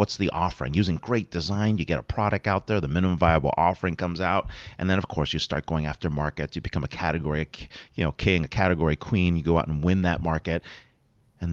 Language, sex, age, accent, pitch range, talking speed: English, male, 30-49, American, 85-125 Hz, 235 wpm